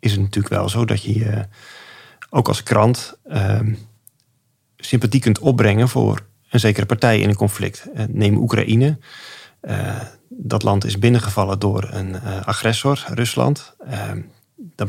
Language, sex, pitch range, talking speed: Dutch, male, 105-120 Hz, 125 wpm